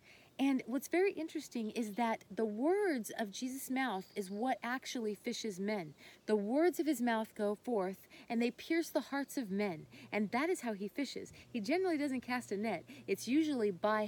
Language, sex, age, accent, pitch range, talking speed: English, female, 30-49, American, 205-270 Hz, 190 wpm